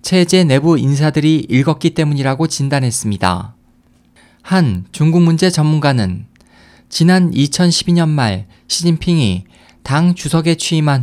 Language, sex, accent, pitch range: Korean, male, native, 125-165 Hz